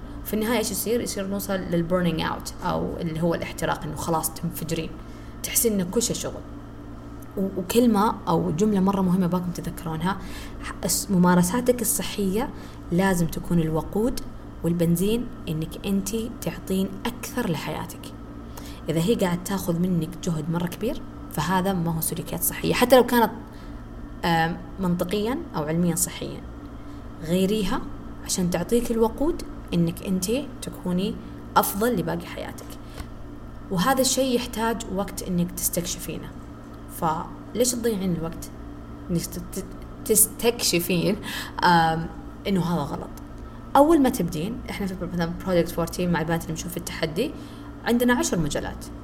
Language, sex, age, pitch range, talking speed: Arabic, female, 20-39, 155-205 Hz, 120 wpm